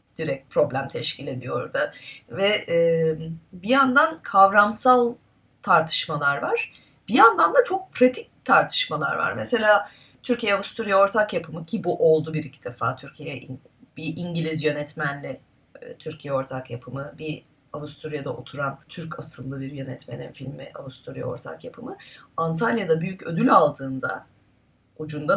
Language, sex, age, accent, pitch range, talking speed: Turkish, female, 30-49, native, 145-215 Hz, 125 wpm